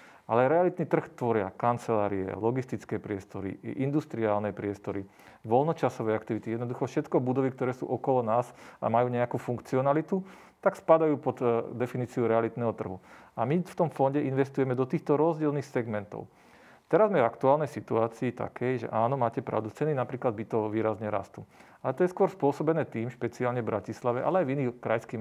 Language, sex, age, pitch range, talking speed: Slovak, male, 40-59, 115-140 Hz, 160 wpm